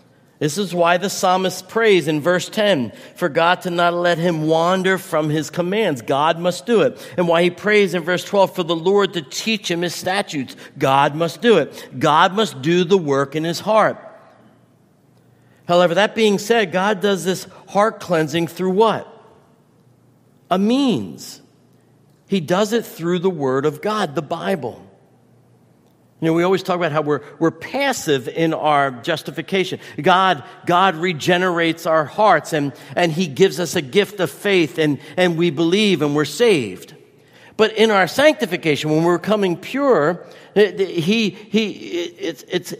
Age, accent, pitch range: 50-69, American, 160-200 Hz